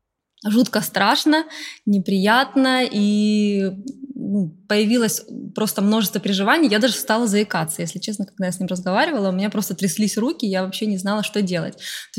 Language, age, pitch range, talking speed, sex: Russian, 20-39, 185-225 Hz, 155 wpm, female